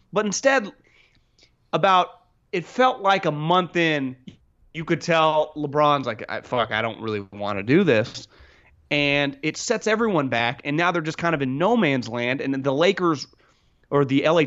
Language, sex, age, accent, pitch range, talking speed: English, male, 30-49, American, 125-170 Hz, 185 wpm